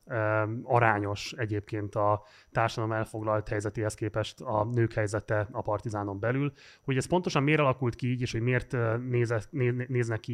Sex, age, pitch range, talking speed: male, 30-49, 110-130 Hz, 165 wpm